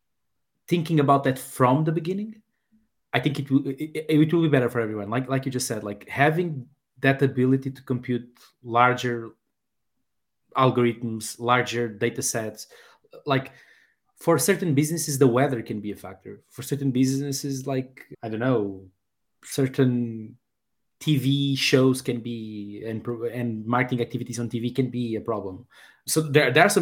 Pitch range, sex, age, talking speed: 120-140 Hz, male, 20-39, 155 wpm